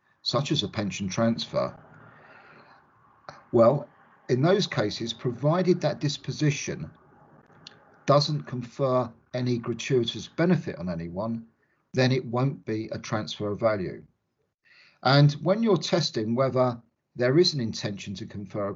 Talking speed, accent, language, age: 125 wpm, British, English, 50-69